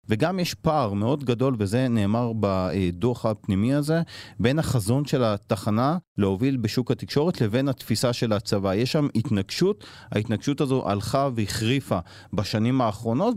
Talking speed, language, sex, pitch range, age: 135 wpm, Hebrew, male, 105-135 Hz, 30-49